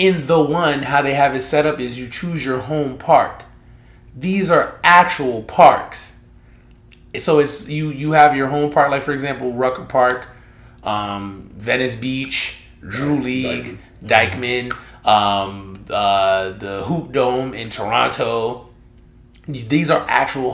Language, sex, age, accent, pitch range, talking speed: English, male, 30-49, American, 115-145 Hz, 140 wpm